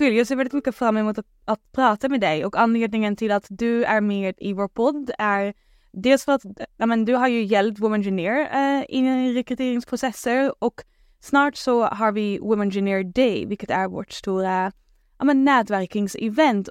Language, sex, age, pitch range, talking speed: English, female, 10-29, 200-245 Hz, 180 wpm